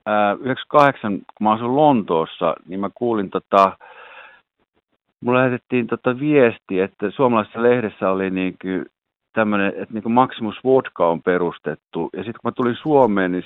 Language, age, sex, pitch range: Finnish, 50-69, male, 95-120 Hz